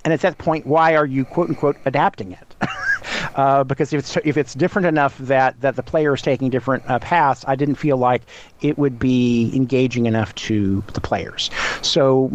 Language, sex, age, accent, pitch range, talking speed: English, male, 50-69, American, 125-155 Hz, 195 wpm